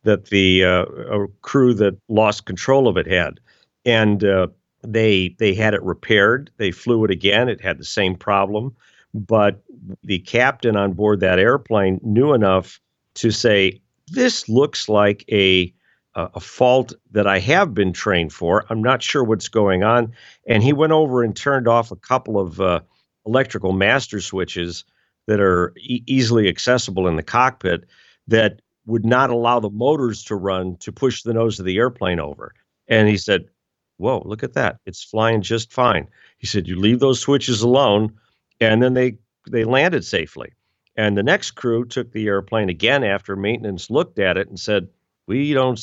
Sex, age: male, 50-69